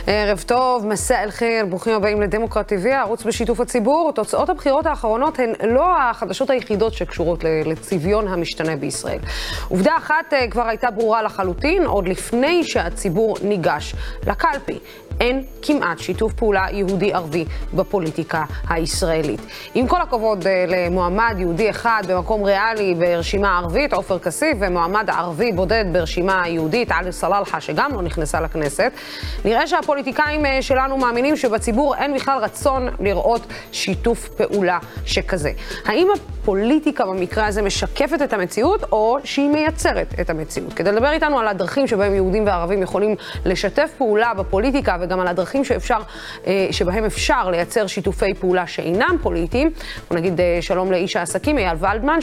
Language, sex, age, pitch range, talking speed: Hebrew, female, 20-39, 185-255 Hz, 135 wpm